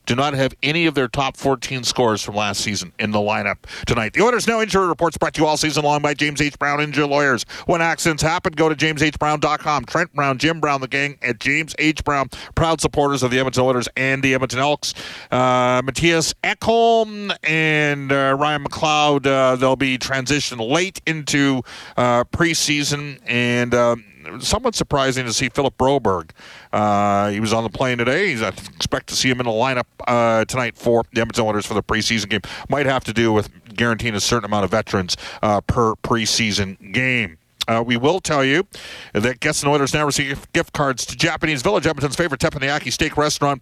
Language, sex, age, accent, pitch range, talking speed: English, male, 40-59, American, 115-150 Hz, 195 wpm